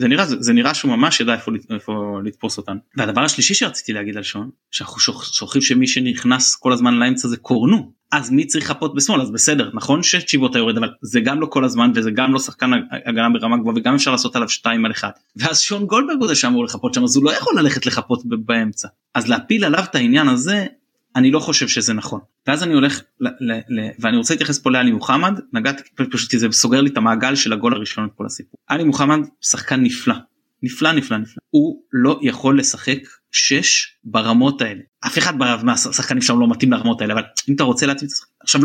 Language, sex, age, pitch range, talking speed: Hebrew, male, 20-39, 115-180 Hz, 210 wpm